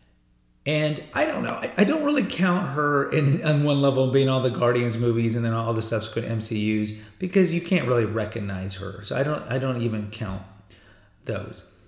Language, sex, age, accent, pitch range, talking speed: English, male, 30-49, American, 105-125 Hz, 190 wpm